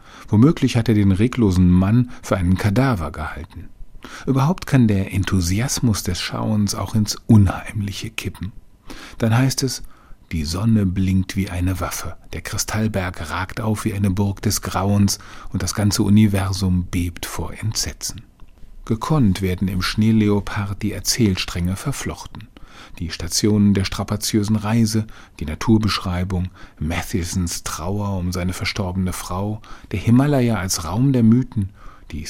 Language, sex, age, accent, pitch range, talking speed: German, male, 40-59, German, 90-115 Hz, 135 wpm